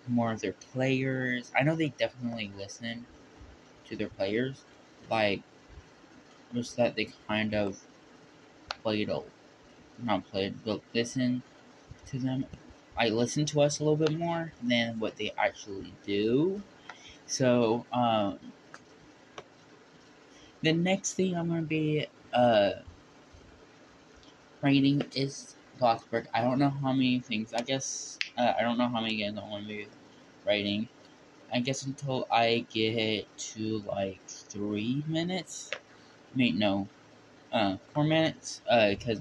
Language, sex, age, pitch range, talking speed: English, male, 20-39, 110-140 Hz, 140 wpm